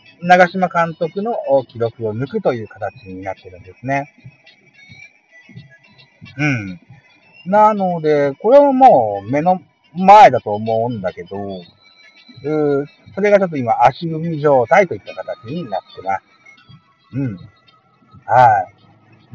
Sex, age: male, 50-69